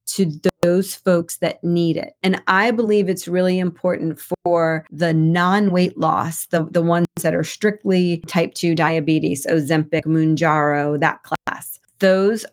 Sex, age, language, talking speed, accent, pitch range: female, 40-59, English, 145 wpm, American, 170-195 Hz